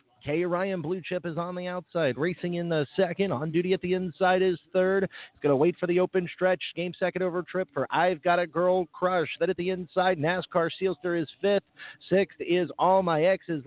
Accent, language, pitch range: American, English, 175-215 Hz